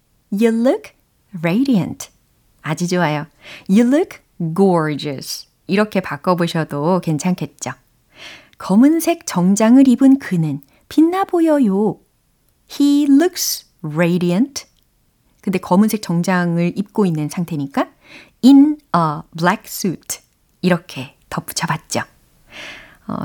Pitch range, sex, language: 170-265 Hz, female, Korean